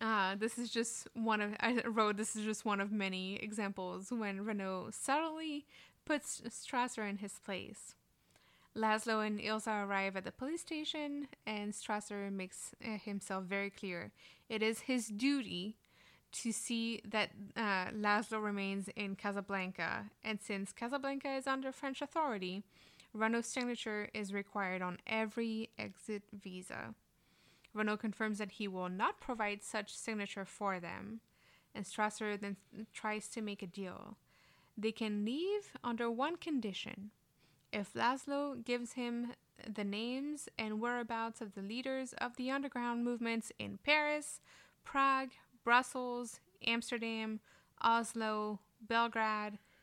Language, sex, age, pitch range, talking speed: English, female, 10-29, 205-240 Hz, 135 wpm